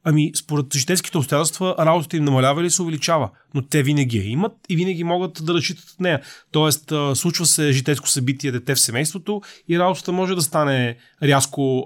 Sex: male